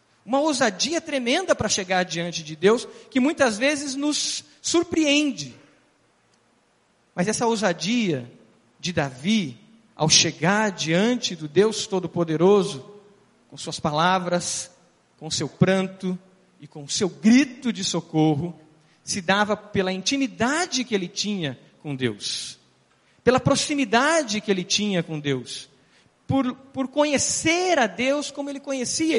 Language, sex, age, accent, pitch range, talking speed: Portuguese, male, 40-59, Brazilian, 165-260 Hz, 125 wpm